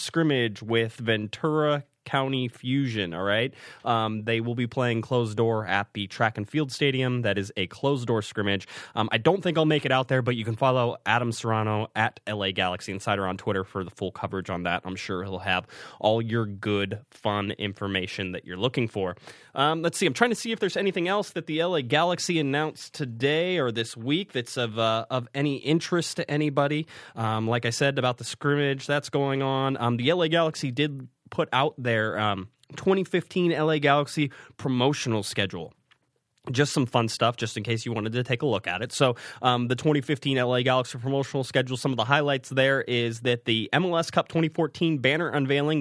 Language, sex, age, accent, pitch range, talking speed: English, male, 20-39, American, 110-145 Hz, 200 wpm